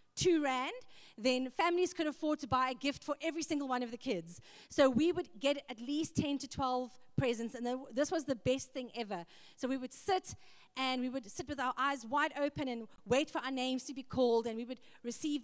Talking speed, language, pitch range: 230 wpm, English, 240-300 Hz